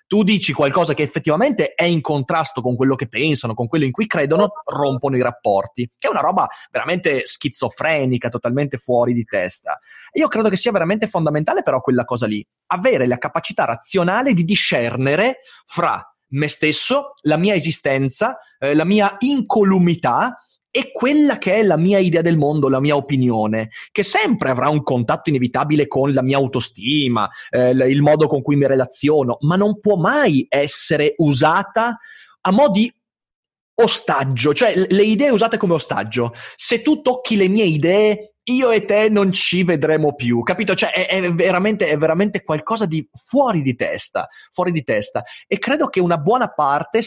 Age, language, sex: 30-49, Italian, male